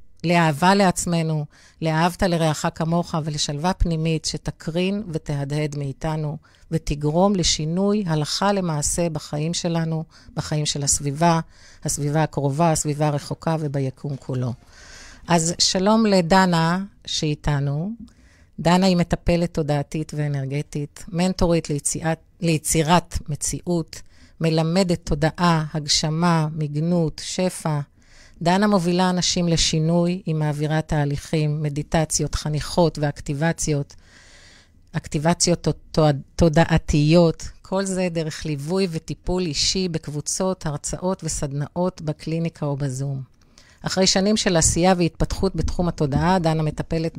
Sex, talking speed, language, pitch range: female, 100 wpm, Hebrew, 150-175 Hz